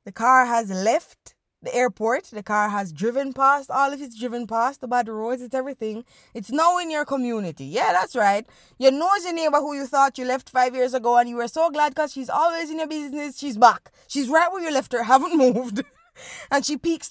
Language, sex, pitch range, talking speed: English, female, 230-290 Hz, 225 wpm